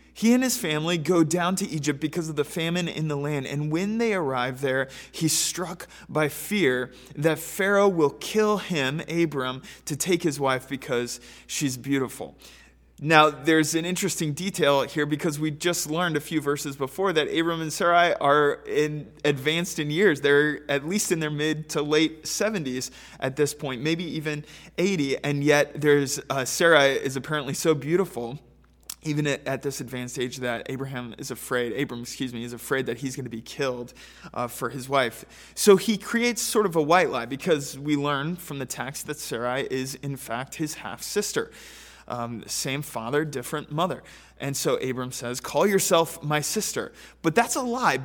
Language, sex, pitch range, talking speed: English, male, 135-165 Hz, 180 wpm